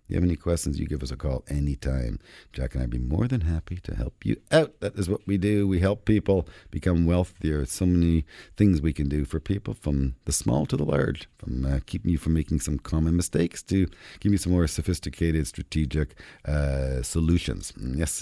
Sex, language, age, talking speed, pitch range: male, English, 50-69, 215 wpm, 75-95 Hz